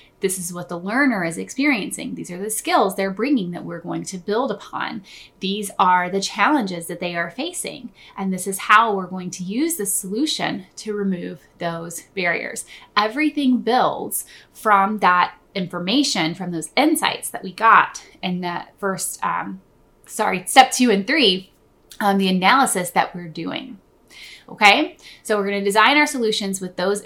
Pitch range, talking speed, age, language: 185-235 Hz, 170 wpm, 20-39, English